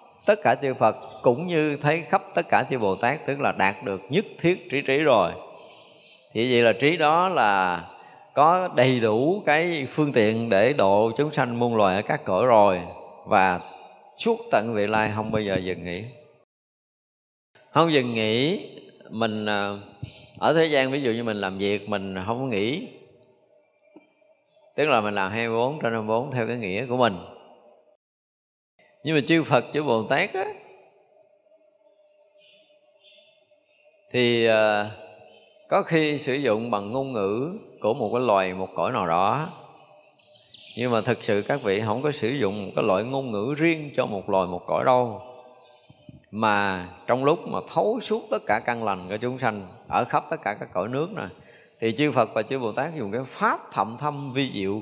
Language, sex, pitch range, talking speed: Vietnamese, male, 110-155 Hz, 180 wpm